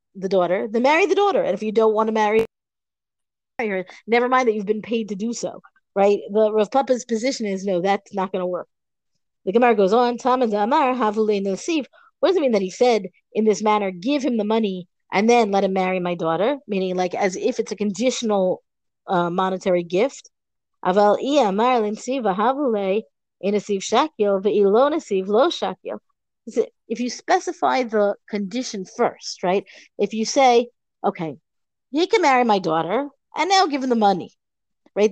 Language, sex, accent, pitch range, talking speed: English, female, American, 195-245 Hz, 160 wpm